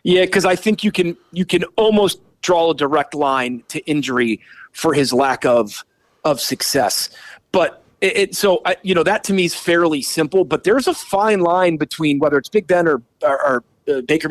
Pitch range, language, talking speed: 145-185 Hz, English, 200 wpm